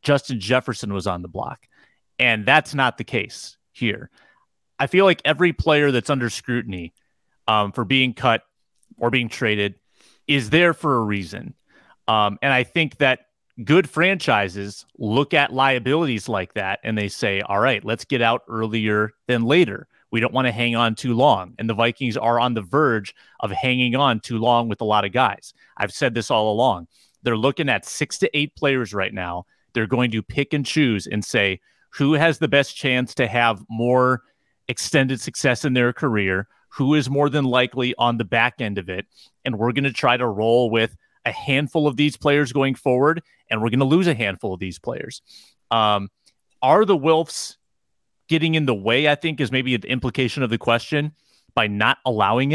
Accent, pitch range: American, 110-140 Hz